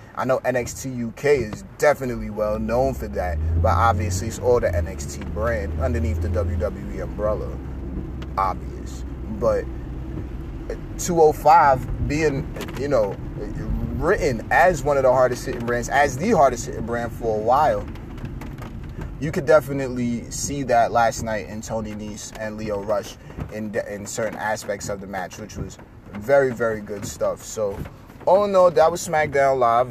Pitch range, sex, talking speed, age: 100-135 Hz, male, 145 wpm, 30-49